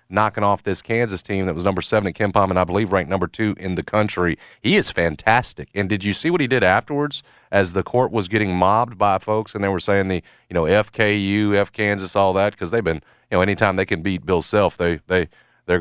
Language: English